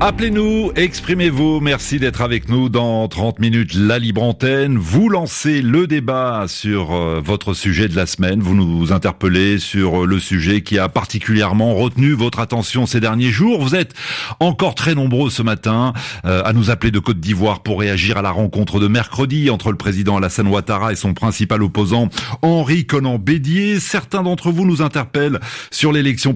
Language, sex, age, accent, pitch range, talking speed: French, male, 40-59, French, 105-140 Hz, 175 wpm